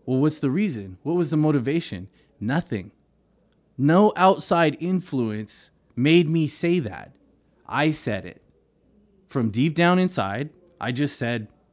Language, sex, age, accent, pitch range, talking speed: English, male, 20-39, American, 115-155 Hz, 135 wpm